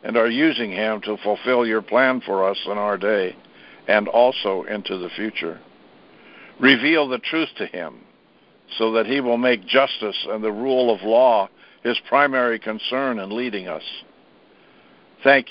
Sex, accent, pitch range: male, American, 105-135 Hz